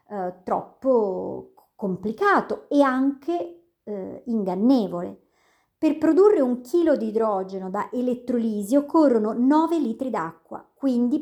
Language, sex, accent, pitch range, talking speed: Italian, male, native, 210-280 Hz, 105 wpm